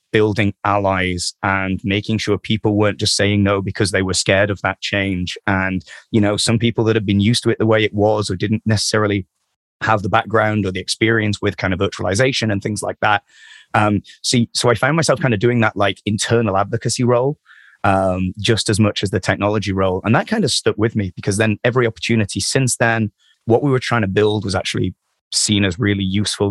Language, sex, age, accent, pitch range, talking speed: English, male, 30-49, British, 95-110 Hz, 215 wpm